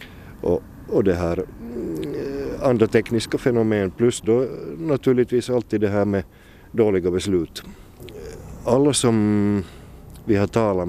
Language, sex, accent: Swedish, male, Finnish